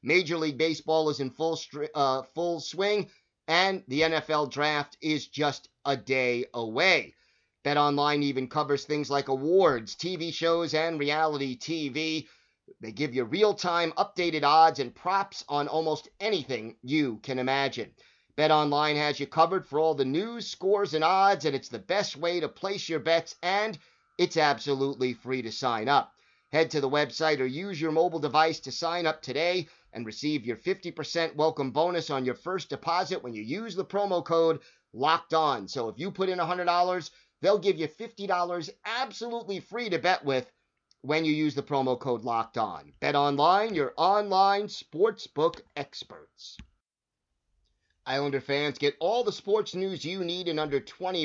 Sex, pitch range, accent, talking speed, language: male, 140-175 Hz, American, 165 wpm, English